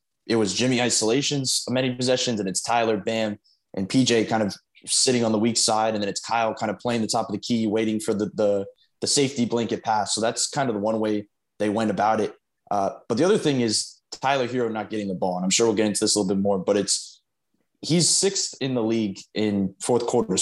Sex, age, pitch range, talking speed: male, 20-39, 105-120 Hz, 245 wpm